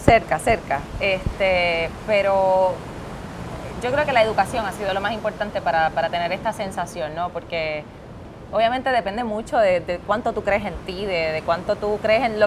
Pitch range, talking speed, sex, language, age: 180-220 Hz, 185 wpm, female, Spanish, 20-39